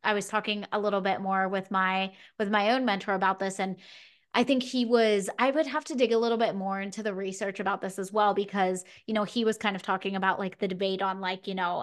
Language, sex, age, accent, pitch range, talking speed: English, female, 20-39, American, 195-230 Hz, 265 wpm